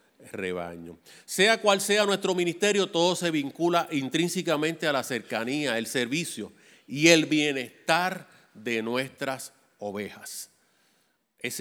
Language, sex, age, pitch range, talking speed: Spanish, male, 40-59, 120-190 Hz, 115 wpm